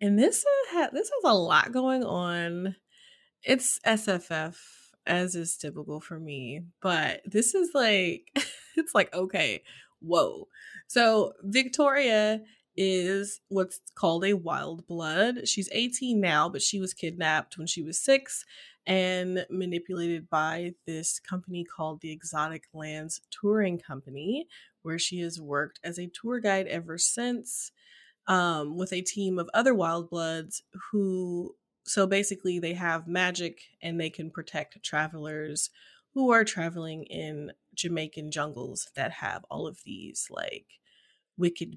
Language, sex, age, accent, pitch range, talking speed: English, female, 20-39, American, 165-220 Hz, 135 wpm